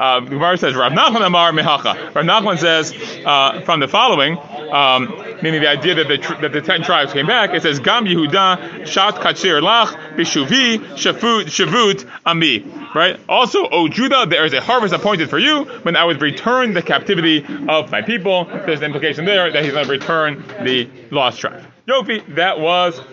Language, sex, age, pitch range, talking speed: English, male, 30-49, 150-200 Hz, 180 wpm